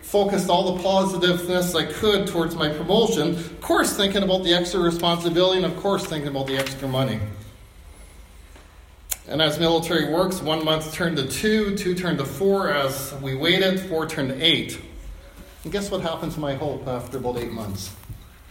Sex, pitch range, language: male, 140-195 Hz, English